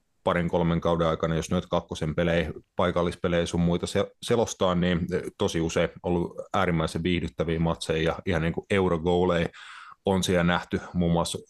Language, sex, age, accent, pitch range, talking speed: Finnish, male, 30-49, native, 80-90 Hz, 150 wpm